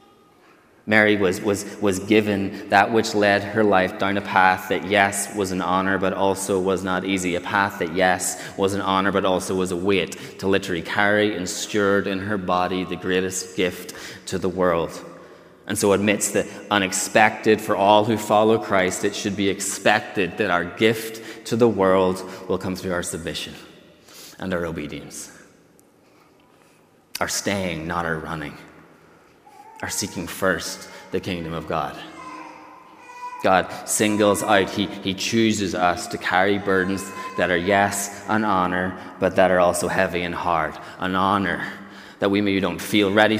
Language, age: English, 30-49